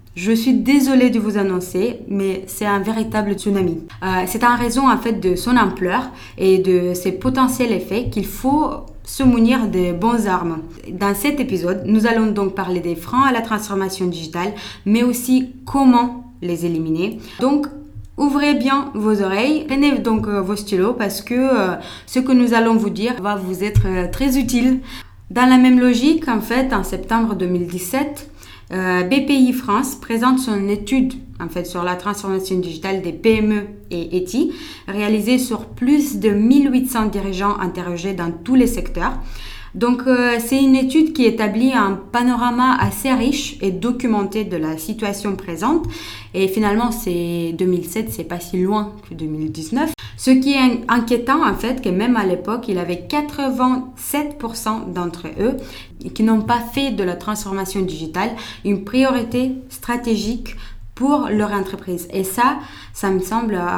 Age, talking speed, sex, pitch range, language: 20-39, 160 wpm, female, 190-255 Hz, French